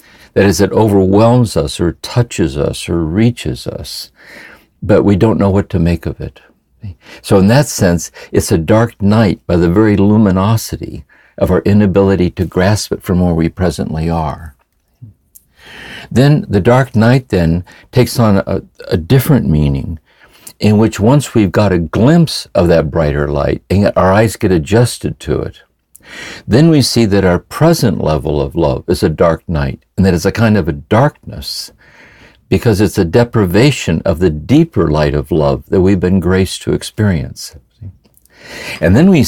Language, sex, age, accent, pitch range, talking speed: English, male, 60-79, American, 85-115 Hz, 170 wpm